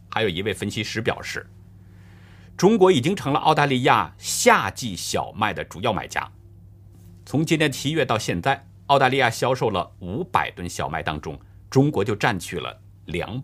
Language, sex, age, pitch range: Chinese, male, 50-69, 100-115 Hz